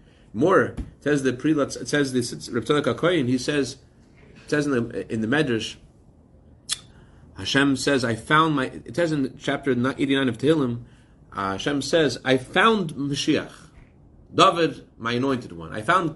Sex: male